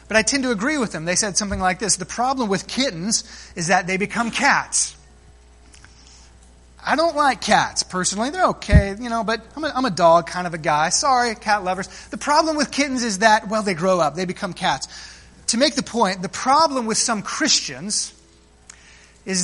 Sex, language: male, English